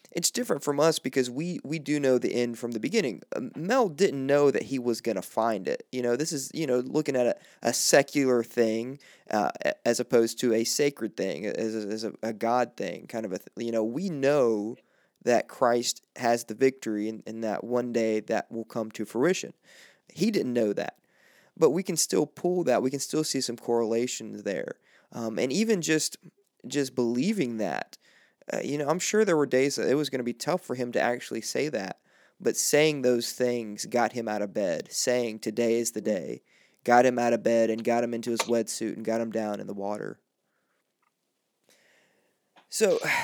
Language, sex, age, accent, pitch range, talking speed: English, male, 20-39, American, 115-145 Hz, 210 wpm